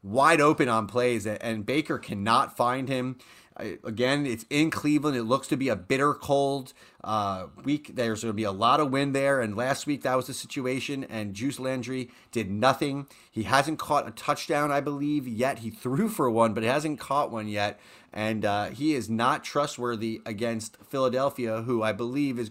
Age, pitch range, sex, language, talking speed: 30-49, 115-145 Hz, male, English, 195 wpm